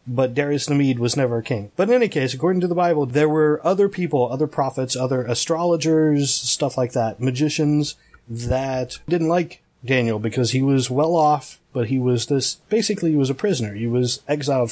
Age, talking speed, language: 30-49, 200 wpm, English